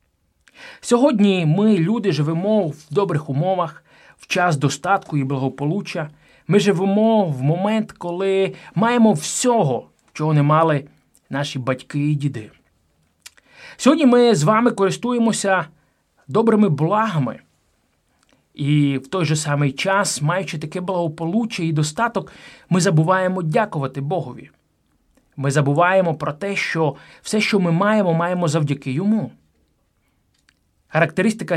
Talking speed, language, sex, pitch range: 115 wpm, Ukrainian, male, 145-200 Hz